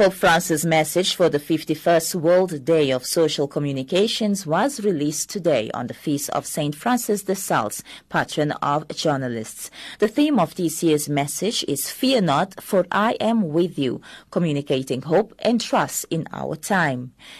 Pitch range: 155-205 Hz